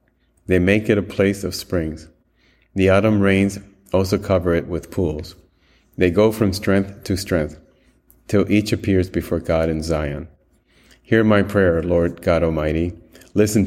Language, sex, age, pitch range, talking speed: English, male, 30-49, 80-95 Hz, 155 wpm